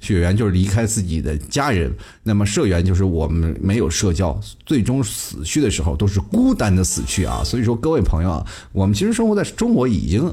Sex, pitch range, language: male, 85-105 Hz, Chinese